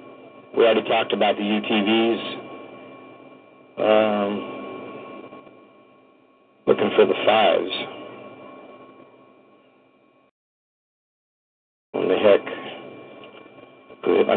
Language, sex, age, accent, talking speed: English, male, 60-79, American, 65 wpm